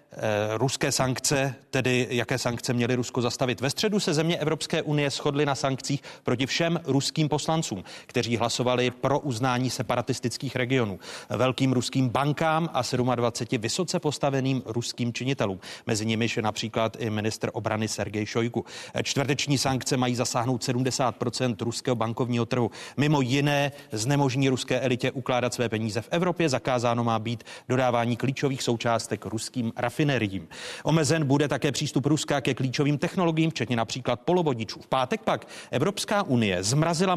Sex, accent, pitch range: male, native, 120-145 Hz